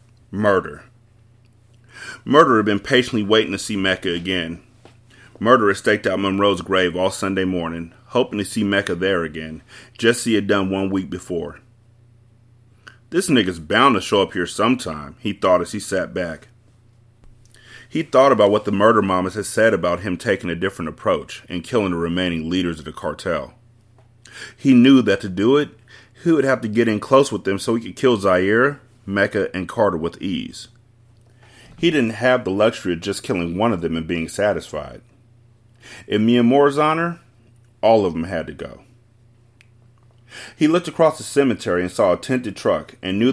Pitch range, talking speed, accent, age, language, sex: 95-120 Hz, 180 wpm, American, 30-49, English, male